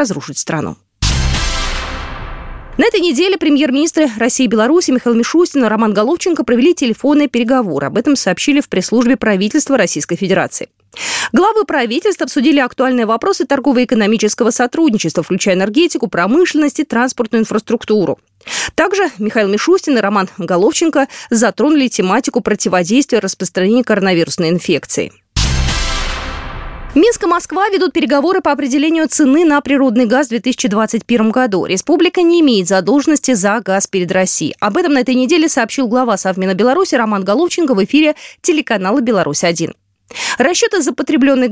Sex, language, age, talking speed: female, Russian, 20-39, 125 wpm